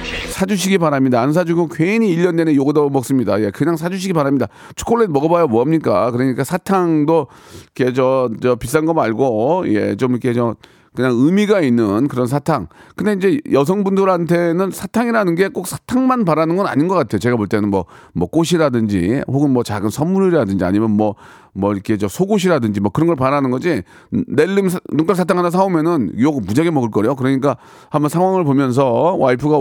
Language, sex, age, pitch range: Korean, male, 40-59, 120-180 Hz